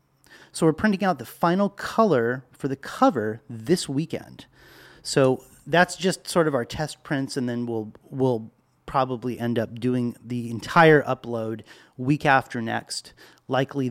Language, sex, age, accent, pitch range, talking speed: English, male, 30-49, American, 125-180 Hz, 150 wpm